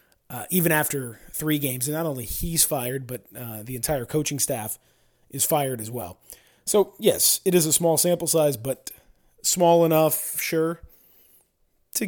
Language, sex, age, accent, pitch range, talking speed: English, male, 30-49, American, 130-165 Hz, 165 wpm